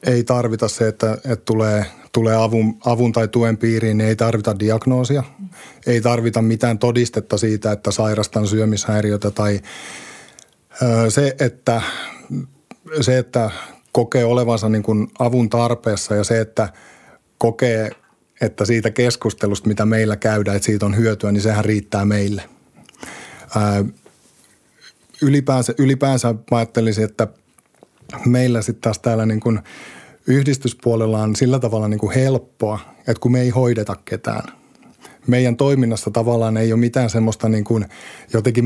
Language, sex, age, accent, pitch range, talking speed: Finnish, male, 50-69, native, 110-125 Hz, 130 wpm